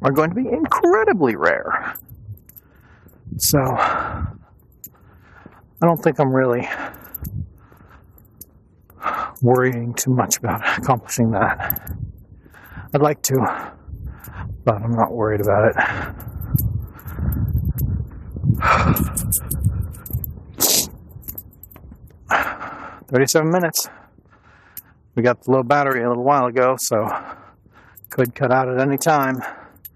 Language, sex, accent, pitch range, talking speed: English, male, American, 100-130 Hz, 90 wpm